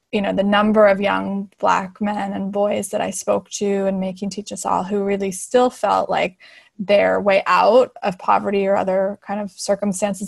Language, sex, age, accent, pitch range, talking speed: English, female, 20-39, American, 195-230 Hz, 200 wpm